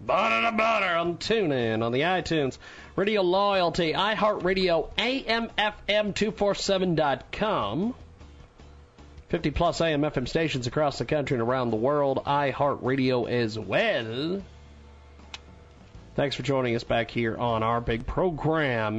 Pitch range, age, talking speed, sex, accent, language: 125-205 Hz, 40-59, 115 wpm, male, American, English